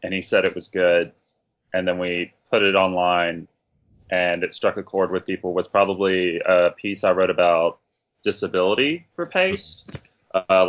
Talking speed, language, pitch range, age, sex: 170 wpm, English, 90-100 Hz, 20-39, male